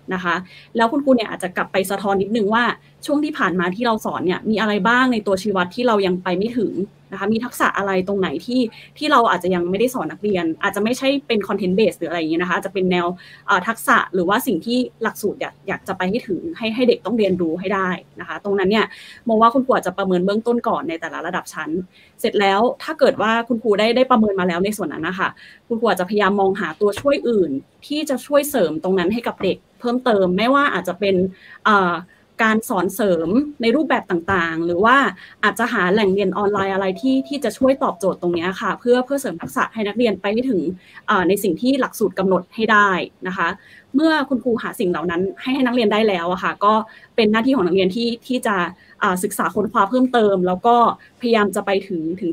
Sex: female